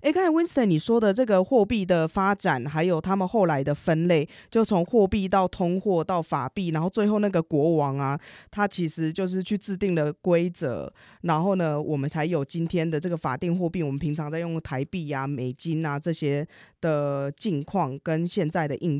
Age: 20-39